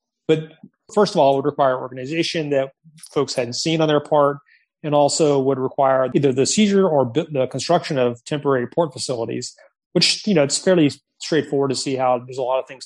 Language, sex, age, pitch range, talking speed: English, male, 30-49, 130-155 Hz, 200 wpm